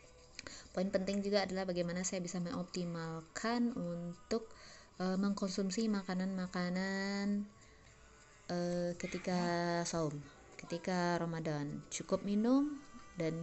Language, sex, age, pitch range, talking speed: Indonesian, female, 20-39, 165-205 Hz, 90 wpm